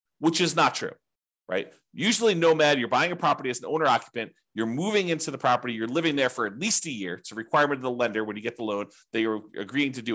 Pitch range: 115-150 Hz